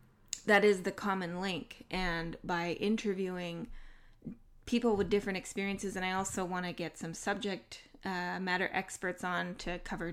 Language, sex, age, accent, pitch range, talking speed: English, female, 20-39, American, 165-200 Hz, 155 wpm